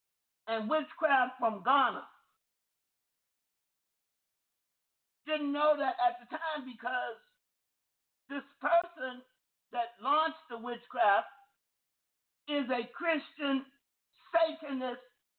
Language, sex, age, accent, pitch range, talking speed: English, male, 50-69, American, 255-315 Hz, 80 wpm